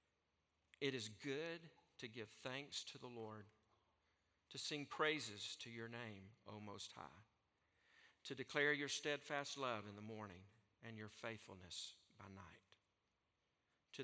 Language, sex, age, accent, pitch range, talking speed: English, male, 50-69, American, 110-140 Hz, 135 wpm